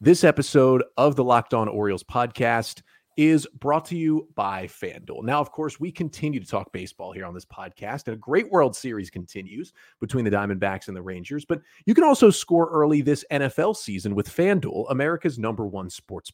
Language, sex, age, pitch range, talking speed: English, male, 30-49, 110-165 Hz, 195 wpm